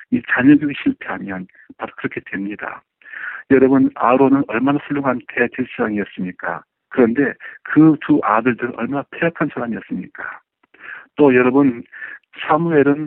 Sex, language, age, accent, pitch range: male, Korean, 50-69, native, 115-180 Hz